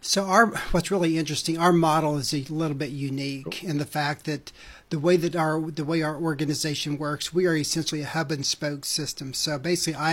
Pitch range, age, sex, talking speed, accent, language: 145-160 Hz, 60-79, male, 205 wpm, American, English